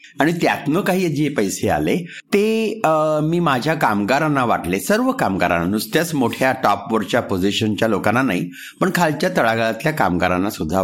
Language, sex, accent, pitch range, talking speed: Marathi, male, native, 120-180 Hz, 140 wpm